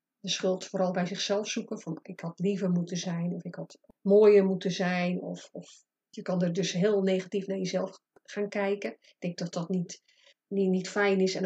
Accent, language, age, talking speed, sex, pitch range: Dutch, Dutch, 30-49, 210 wpm, female, 190-220 Hz